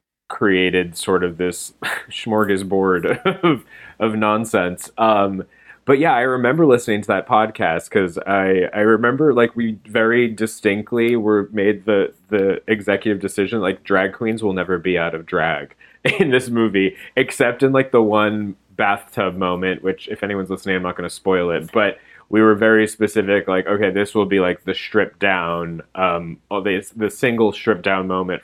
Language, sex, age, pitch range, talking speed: English, male, 20-39, 95-115 Hz, 175 wpm